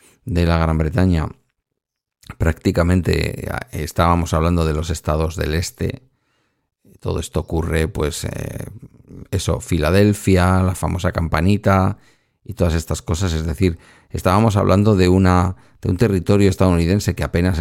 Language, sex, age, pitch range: Spanish, male, 50-69, 85-100 Hz